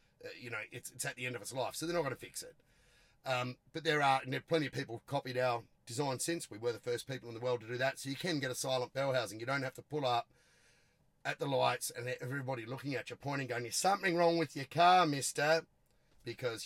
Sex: male